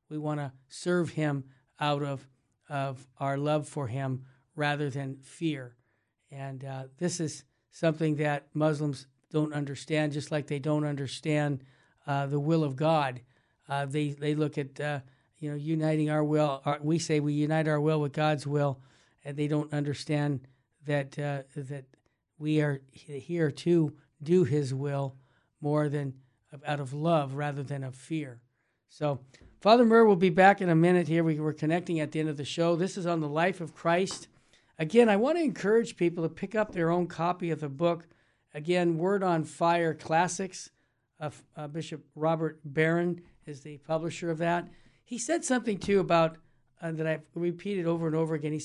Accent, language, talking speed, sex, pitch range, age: American, English, 185 wpm, male, 140-170 Hz, 50-69